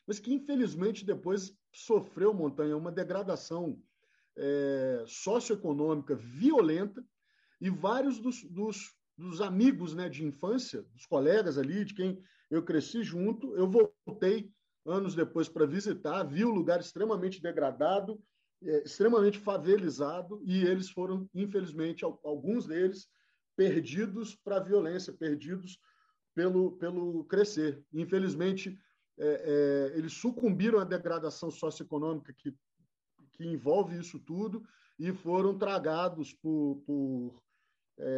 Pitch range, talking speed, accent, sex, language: 160-215 Hz, 115 wpm, Brazilian, male, Portuguese